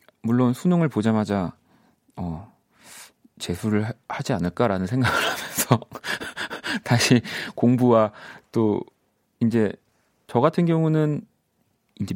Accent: native